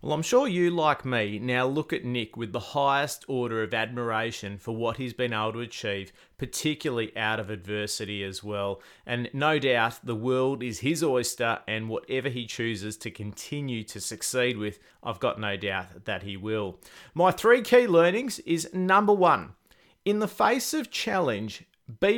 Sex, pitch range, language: male, 115-170 Hz, English